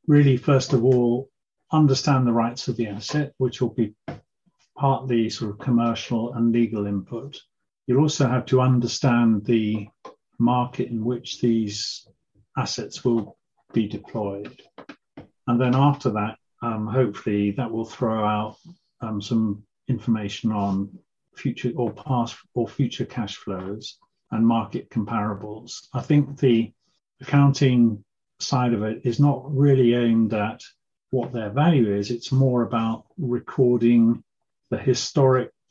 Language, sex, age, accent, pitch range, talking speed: English, male, 40-59, British, 110-125 Hz, 135 wpm